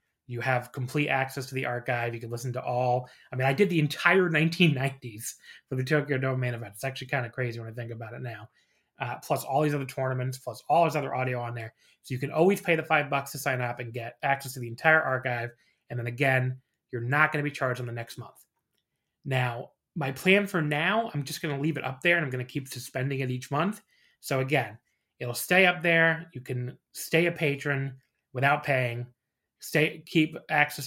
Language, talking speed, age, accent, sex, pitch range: English, 230 wpm, 30-49, American, male, 125-160 Hz